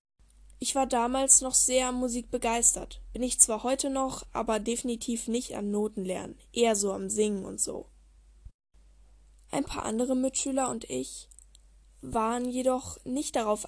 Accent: German